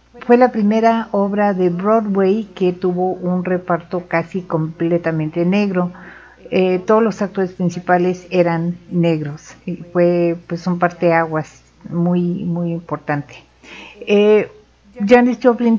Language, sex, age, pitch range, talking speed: Spanish, female, 50-69, 170-220 Hz, 125 wpm